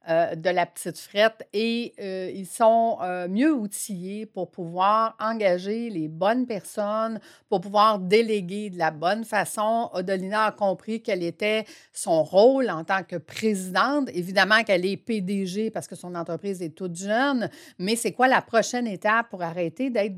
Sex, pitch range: female, 190-230 Hz